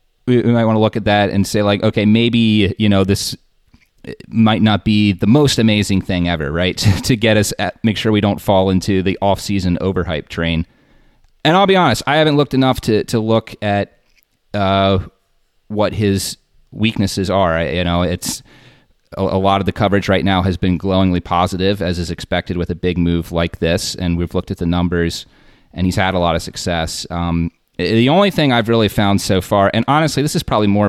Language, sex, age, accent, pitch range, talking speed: English, male, 30-49, American, 90-110 Hz, 210 wpm